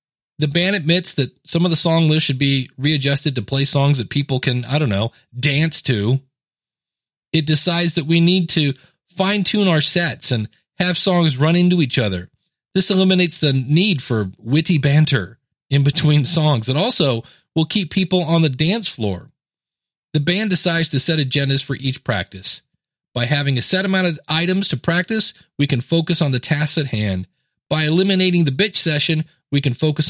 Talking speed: 185 wpm